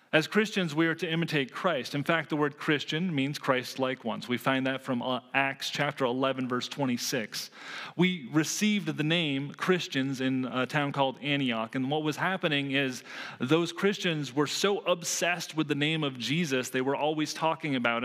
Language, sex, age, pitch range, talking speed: English, male, 30-49, 130-165 Hz, 185 wpm